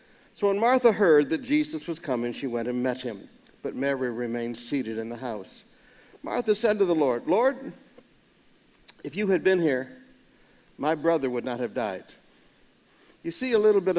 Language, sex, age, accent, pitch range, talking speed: English, male, 60-79, American, 145-215 Hz, 180 wpm